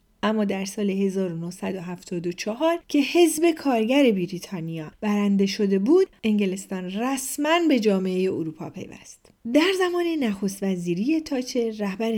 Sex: female